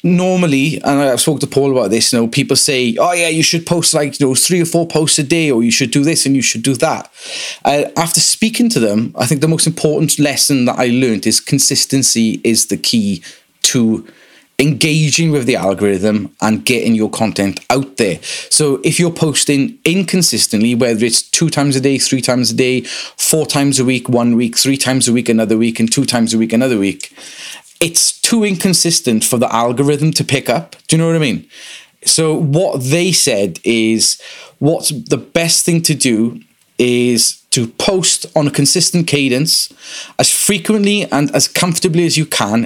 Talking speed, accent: 200 wpm, British